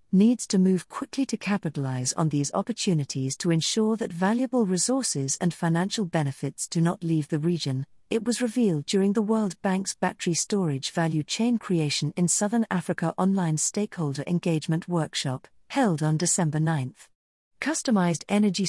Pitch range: 160-220 Hz